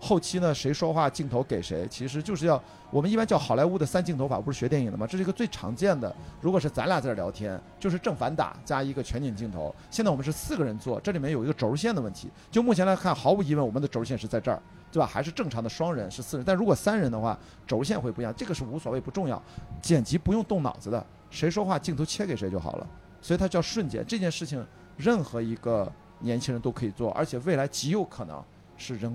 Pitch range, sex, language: 115-165 Hz, male, Chinese